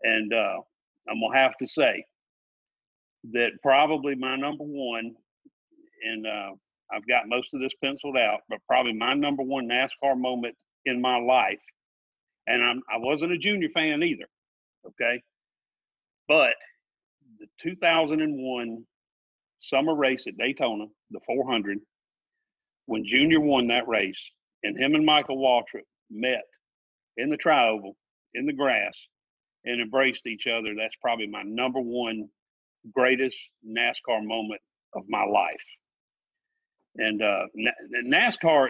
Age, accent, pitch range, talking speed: 50-69, American, 125-195 Hz, 130 wpm